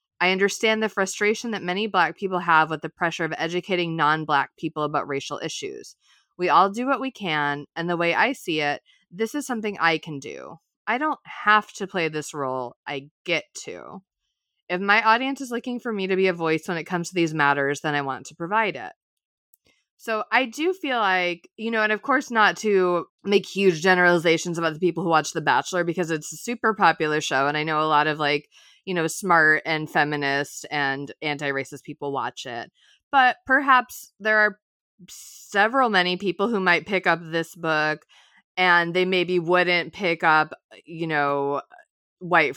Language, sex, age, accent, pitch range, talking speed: English, female, 20-39, American, 155-200 Hz, 195 wpm